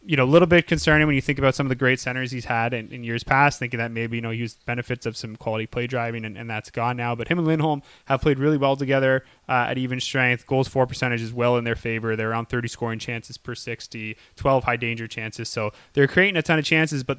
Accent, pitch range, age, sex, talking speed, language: American, 115-135 Hz, 20-39, male, 275 wpm, English